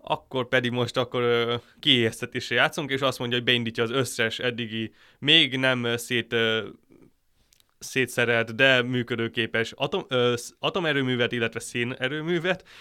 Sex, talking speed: male, 105 wpm